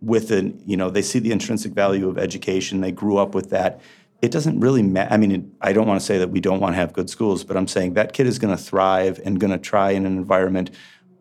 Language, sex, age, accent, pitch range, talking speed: English, male, 40-59, American, 95-100 Hz, 275 wpm